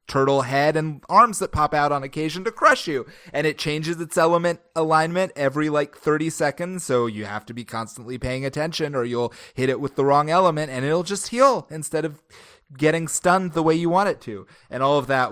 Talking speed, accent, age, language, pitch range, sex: 220 wpm, American, 30-49, English, 115-140 Hz, male